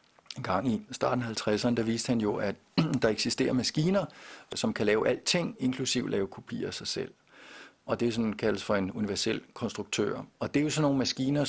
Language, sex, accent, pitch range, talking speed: Danish, male, native, 110-130 Hz, 215 wpm